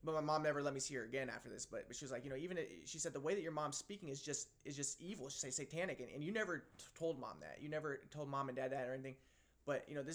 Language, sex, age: English, male, 20-39